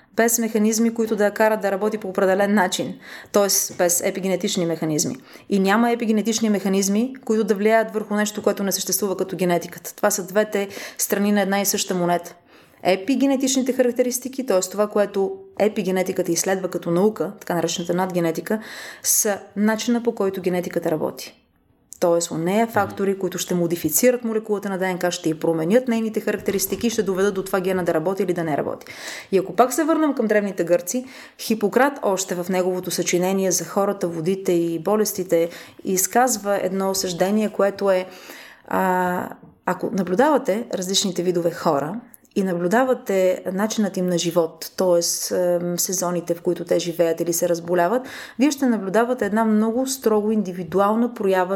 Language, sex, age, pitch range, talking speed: Bulgarian, female, 30-49, 180-220 Hz, 155 wpm